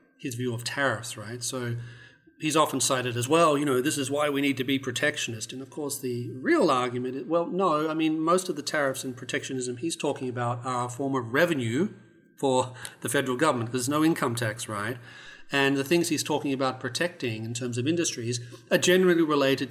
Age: 40-59